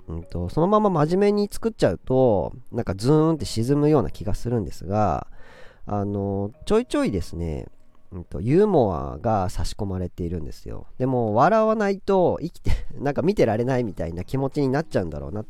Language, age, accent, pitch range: Japanese, 40-59, native, 90-150 Hz